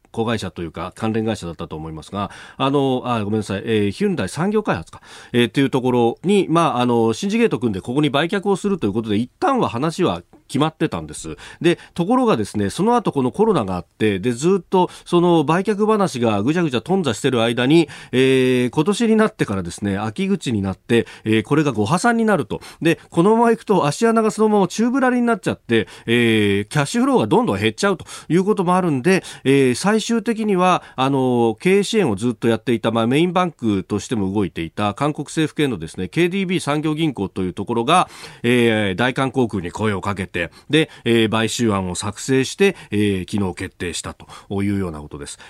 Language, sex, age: Japanese, male, 40-59